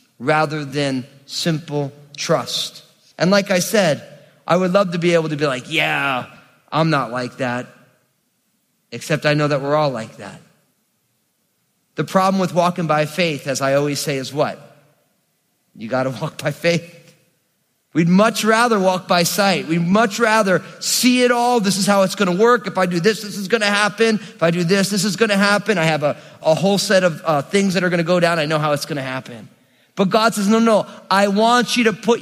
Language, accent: English, American